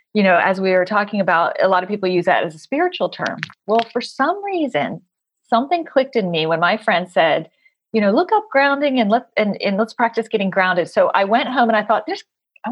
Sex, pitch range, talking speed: female, 180-250 Hz, 240 wpm